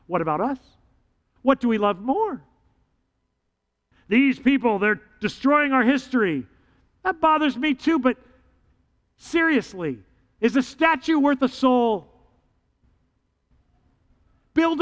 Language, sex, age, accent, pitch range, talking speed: English, male, 50-69, American, 195-275 Hz, 110 wpm